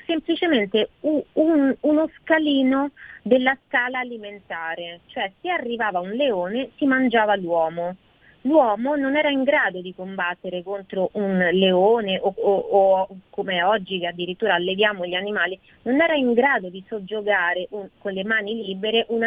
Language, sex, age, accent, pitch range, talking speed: Italian, female, 30-49, native, 185-260 Hz, 140 wpm